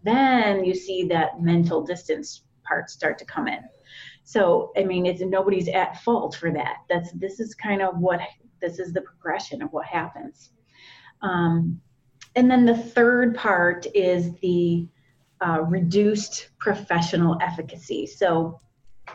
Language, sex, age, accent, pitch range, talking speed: English, female, 30-49, American, 165-205 Hz, 145 wpm